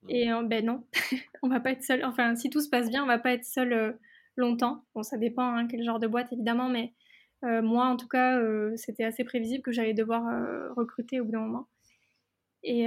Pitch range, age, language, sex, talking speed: 230-255 Hz, 20-39, French, female, 245 wpm